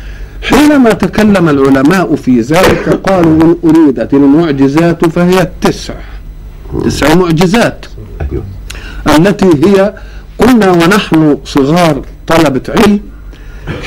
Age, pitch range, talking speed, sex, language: 50-69, 145-195 Hz, 85 wpm, male, Arabic